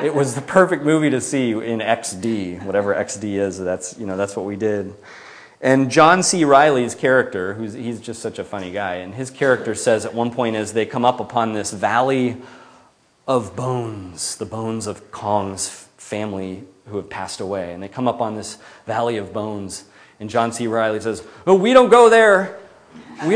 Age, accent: 30-49, American